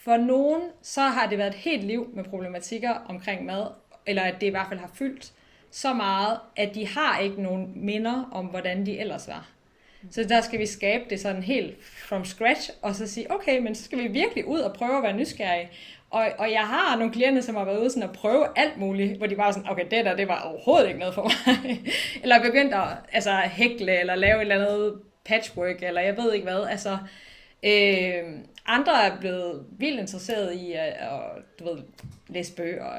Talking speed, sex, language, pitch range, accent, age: 215 wpm, female, Danish, 195-245 Hz, native, 20-39